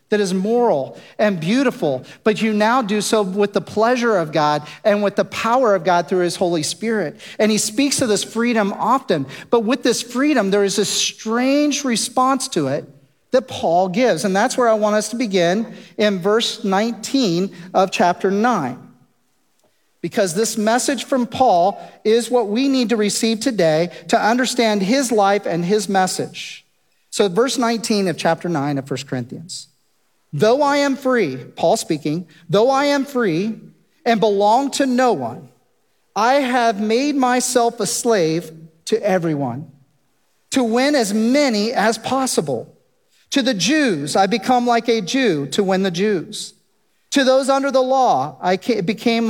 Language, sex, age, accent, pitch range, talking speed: English, male, 40-59, American, 195-250 Hz, 165 wpm